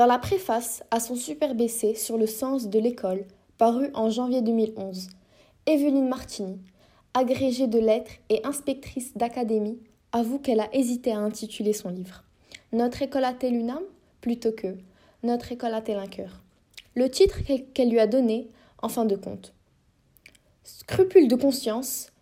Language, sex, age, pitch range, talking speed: French, female, 20-39, 210-250 Hz, 155 wpm